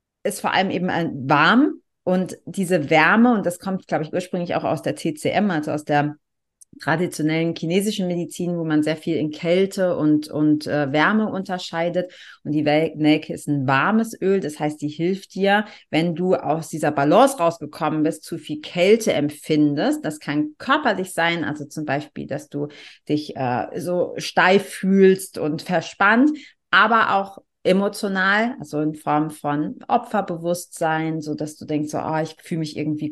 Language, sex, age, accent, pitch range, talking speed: German, female, 40-59, German, 150-185 Hz, 165 wpm